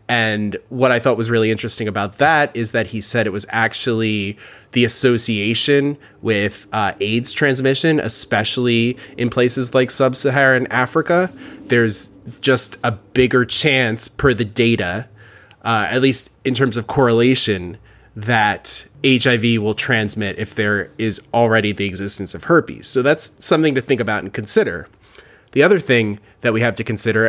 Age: 20-39